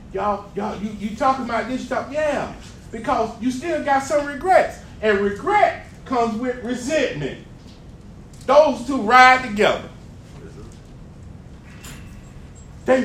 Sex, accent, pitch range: male, American, 215-275 Hz